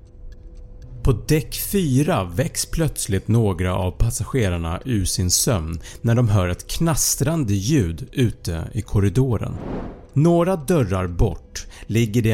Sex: male